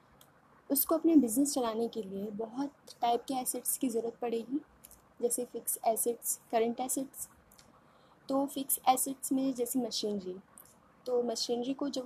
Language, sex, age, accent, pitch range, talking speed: English, female, 20-39, Indian, 225-265 Hz, 140 wpm